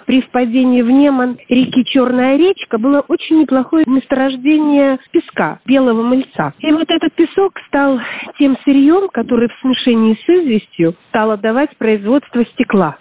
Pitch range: 215-295 Hz